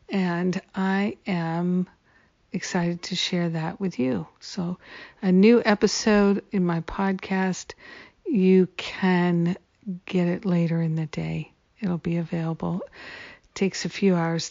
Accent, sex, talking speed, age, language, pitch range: American, female, 130 wpm, 50-69, English, 170-205 Hz